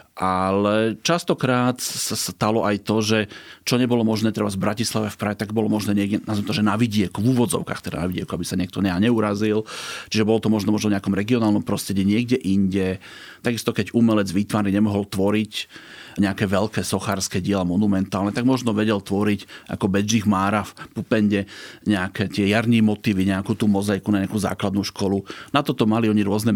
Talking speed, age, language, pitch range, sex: 185 wpm, 40-59, Slovak, 100-115 Hz, male